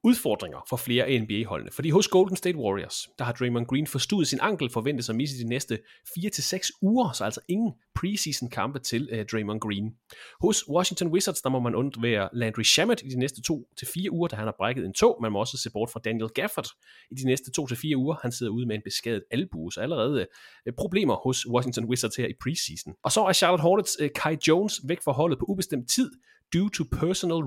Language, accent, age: Danish, native, 30-49